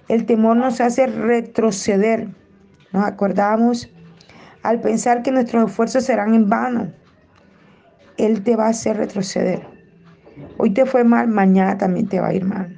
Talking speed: 150 wpm